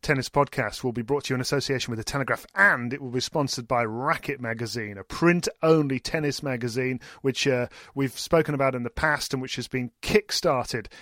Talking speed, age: 205 wpm, 40-59